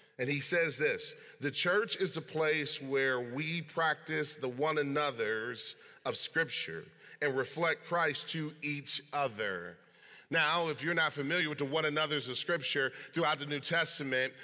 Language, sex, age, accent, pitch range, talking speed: English, male, 30-49, American, 150-190 Hz, 160 wpm